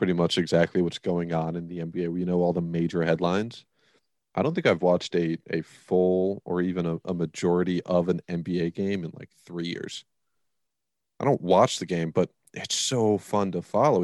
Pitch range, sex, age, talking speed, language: 85-95 Hz, male, 30-49, 200 wpm, English